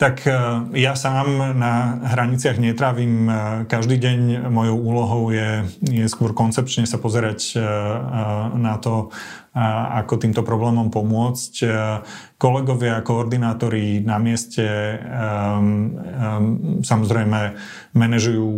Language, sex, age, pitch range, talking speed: Slovak, male, 30-49, 105-115 Hz, 90 wpm